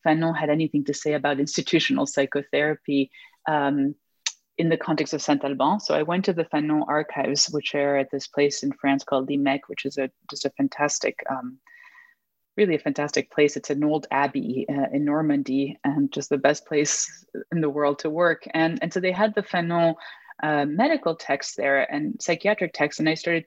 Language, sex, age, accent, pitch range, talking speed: English, female, 20-39, Canadian, 145-175 Hz, 190 wpm